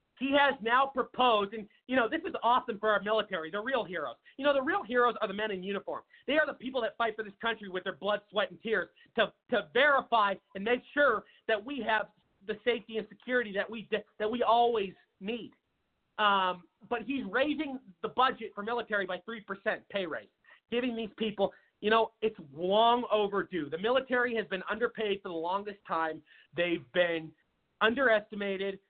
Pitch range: 200-265 Hz